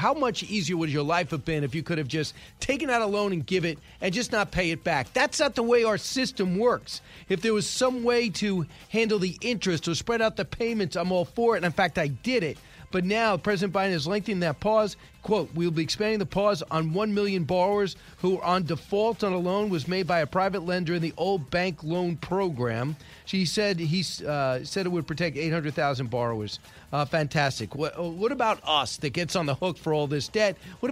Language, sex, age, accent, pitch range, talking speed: English, male, 40-59, American, 165-210 Hz, 225 wpm